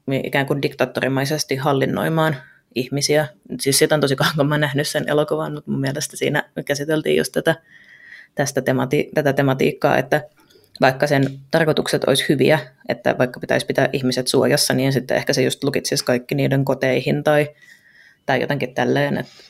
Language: Finnish